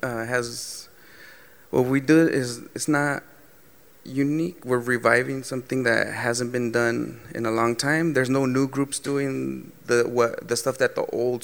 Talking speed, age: 170 wpm, 20-39